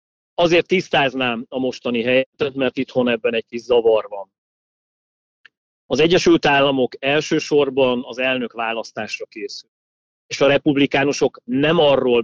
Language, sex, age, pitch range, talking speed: Hungarian, male, 40-59, 120-155 Hz, 125 wpm